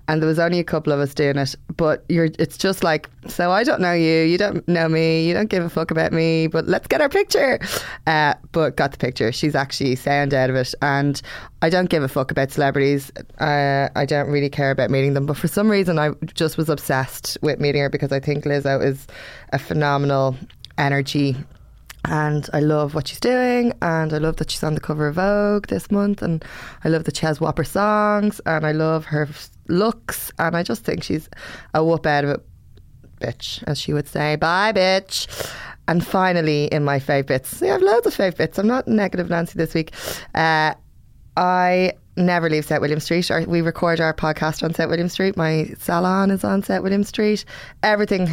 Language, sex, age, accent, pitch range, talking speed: English, female, 20-39, Irish, 145-175 Hz, 210 wpm